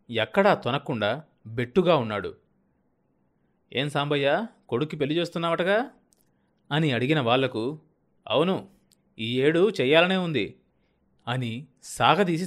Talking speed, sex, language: 90 wpm, male, Telugu